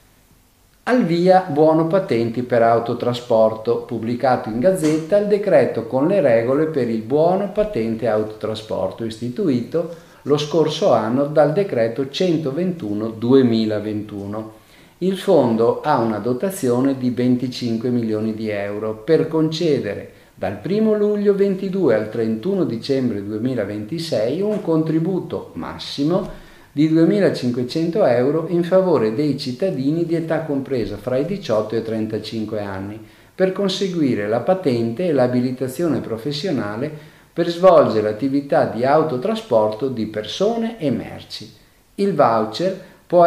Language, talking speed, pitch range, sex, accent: Italian, 120 wpm, 115-175 Hz, male, native